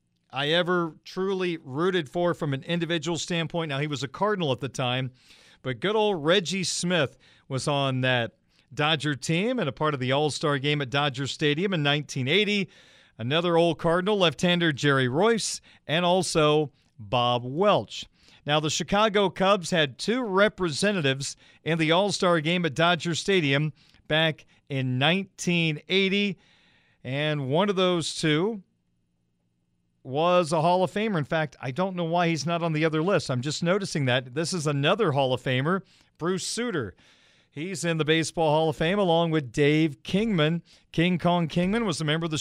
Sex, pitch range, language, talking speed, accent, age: male, 140-175 Hz, English, 170 wpm, American, 40-59